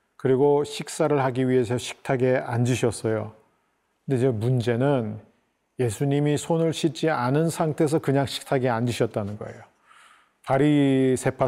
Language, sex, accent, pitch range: Korean, male, native, 120-155 Hz